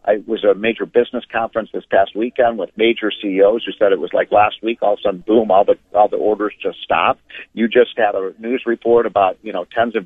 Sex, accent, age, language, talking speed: male, American, 50-69, English, 255 wpm